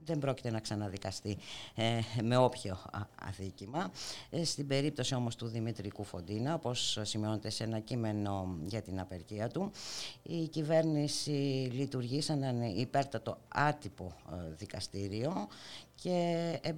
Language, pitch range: Greek, 105-150 Hz